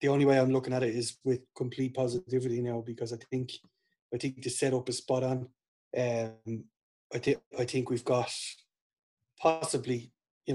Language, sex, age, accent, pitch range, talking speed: English, male, 30-49, Irish, 125-140 Hz, 170 wpm